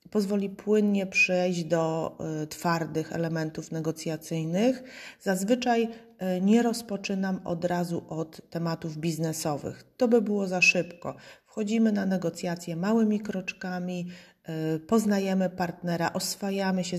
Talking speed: 100 wpm